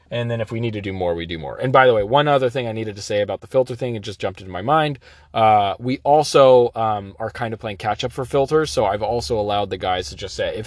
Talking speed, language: 305 wpm, English